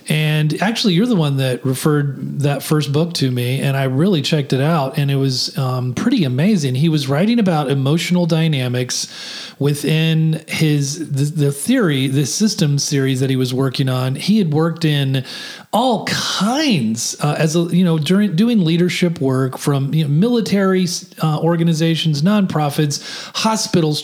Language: English